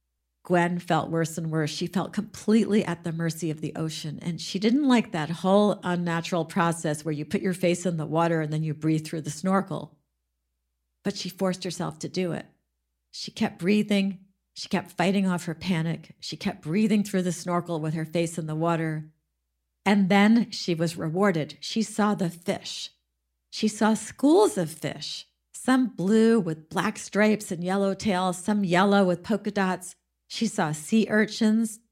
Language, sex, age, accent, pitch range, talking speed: English, female, 50-69, American, 160-205 Hz, 180 wpm